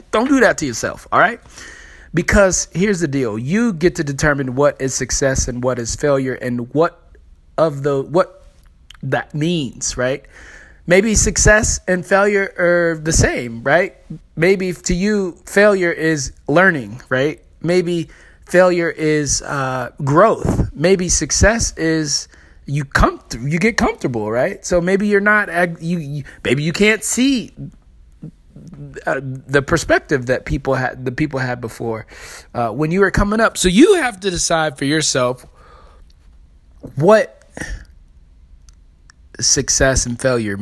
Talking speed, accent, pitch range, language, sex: 145 wpm, American, 130-195 Hz, English, male